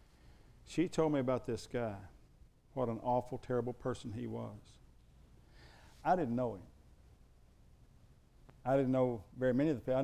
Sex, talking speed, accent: male, 155 wpm, American